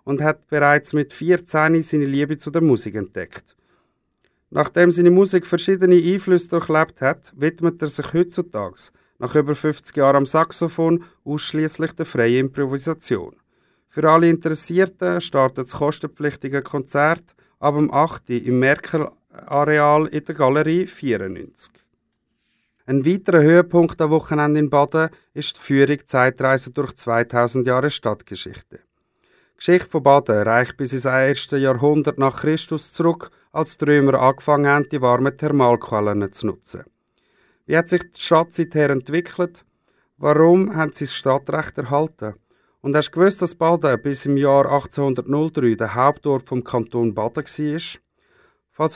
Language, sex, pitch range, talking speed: German, male, 135-160 Hz, 140 wpm